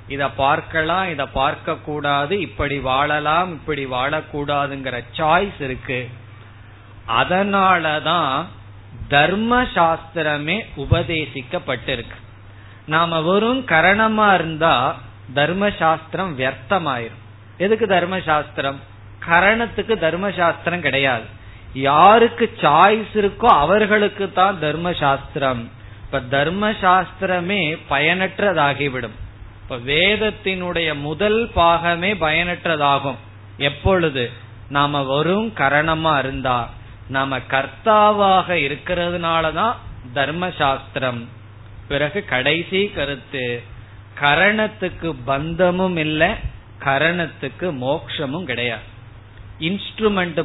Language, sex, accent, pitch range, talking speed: Tamil, male, native, 125-180 Hz, 70 wpm